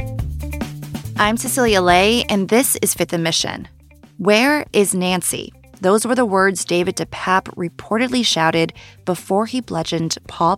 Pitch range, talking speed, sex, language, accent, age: 165-220 Hz, 130 wpm, female, English, American, 20-39